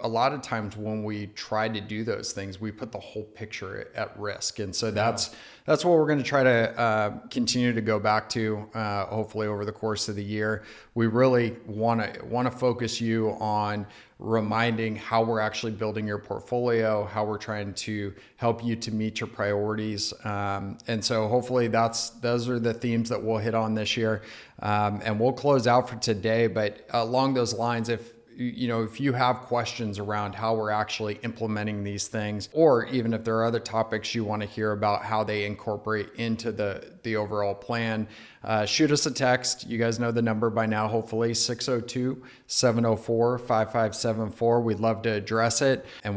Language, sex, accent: English, male, American